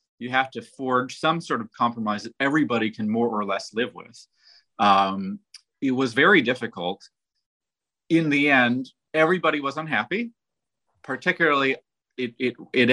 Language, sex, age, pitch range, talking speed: English, male, 30-49, 105-145 Hz, 145 wpm